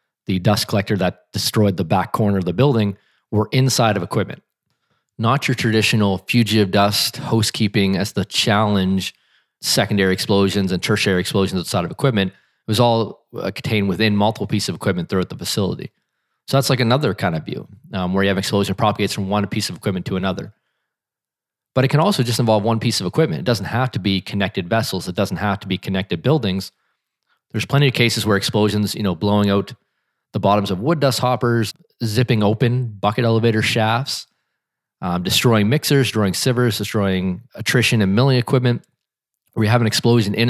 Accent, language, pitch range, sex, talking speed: American, English, 100-120 Hz, male, 185 wpm